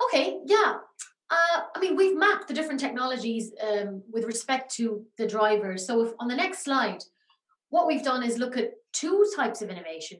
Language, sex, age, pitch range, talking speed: English, female, 30-49, 210-270 Hz, 190 wpm